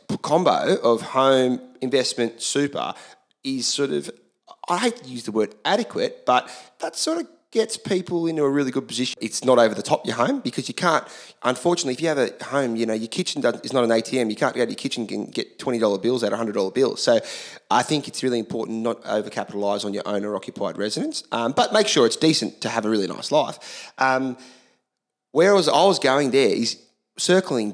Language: English